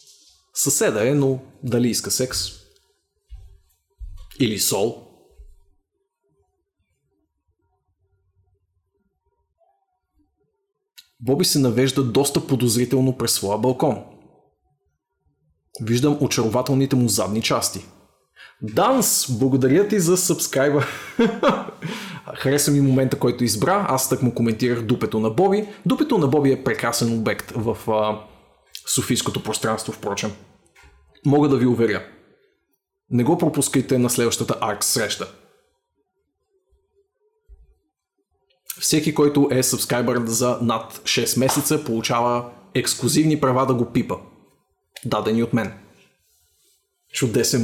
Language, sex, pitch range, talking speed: Bulgarian, male, 110-145 Hz, 95 wpm